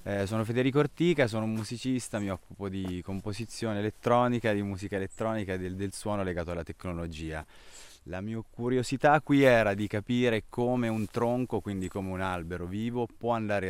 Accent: native